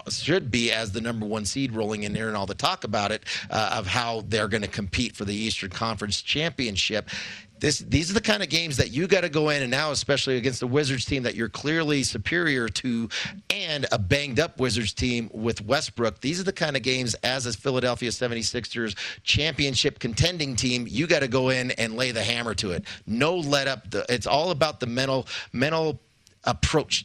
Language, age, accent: English, 40-59, American